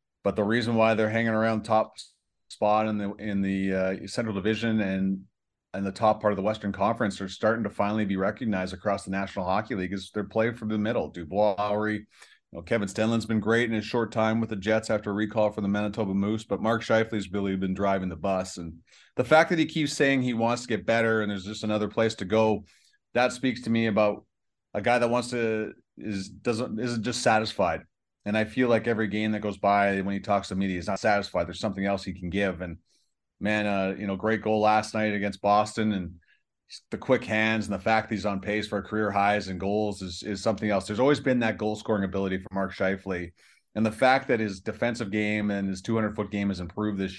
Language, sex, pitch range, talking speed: English, male, 95-110 Hz, 235 wpm